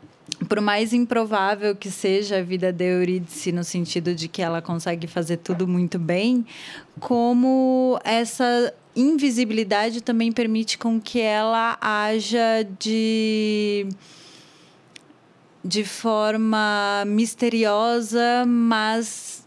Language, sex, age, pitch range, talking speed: Portuguese, female, 20-39, 185-225 Hz, 100 wpm